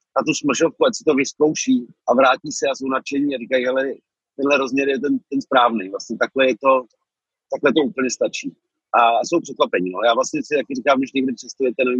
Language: Czech